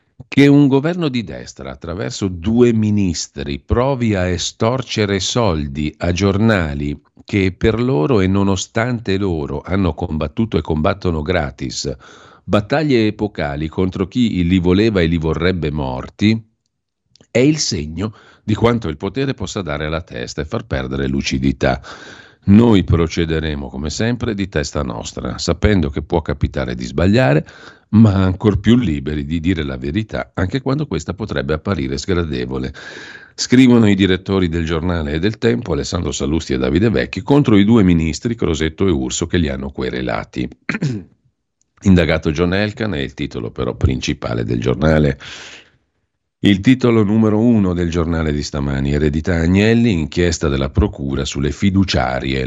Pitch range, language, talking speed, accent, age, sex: 70-105 Hz, Italian, 145 wpm, native, 50-69, male